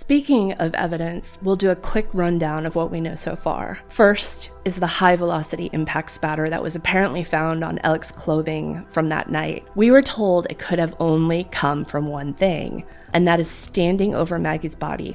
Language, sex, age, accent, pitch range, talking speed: English, female, 20-39, American, 160-195 Hz, 190 wpm